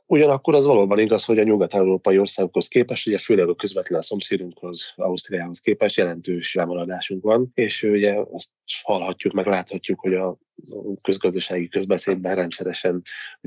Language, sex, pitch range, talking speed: Hungarian, male, 90-110 Hz, 140 wpm